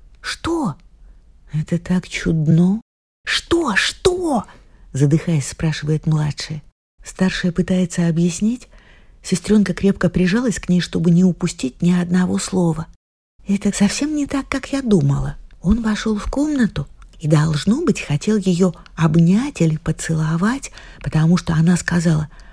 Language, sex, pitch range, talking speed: Russian, female, 150-185 Hz, 125 wpm